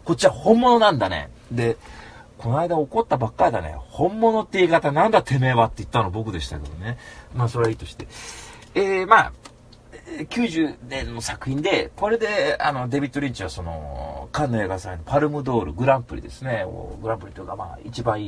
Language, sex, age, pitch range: Japanese, male, 40-59, 95-140 Hz